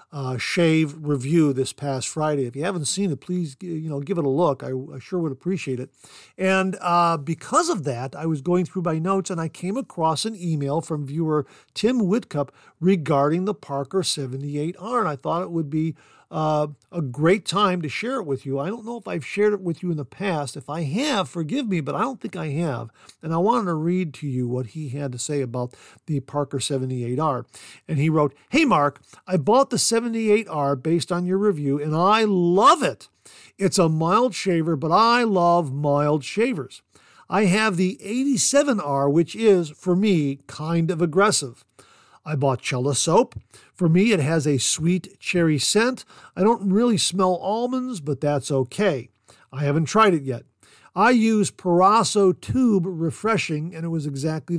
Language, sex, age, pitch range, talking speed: English, male, 50-69, 145-195 Hz, 190 wpm